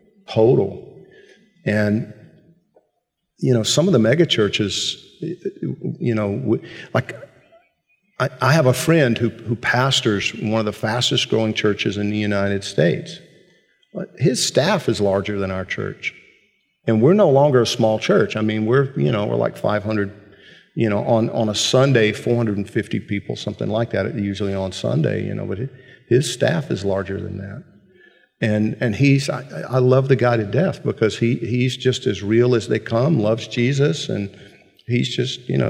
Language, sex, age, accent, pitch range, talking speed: English, male, 50-69, American, 105-135 Hz, 175 wpm